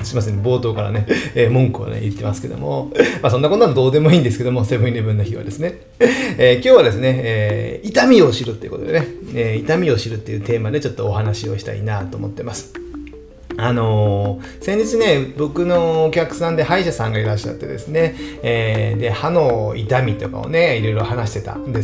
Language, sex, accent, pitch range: Japanese, male, native, 115-175 Hz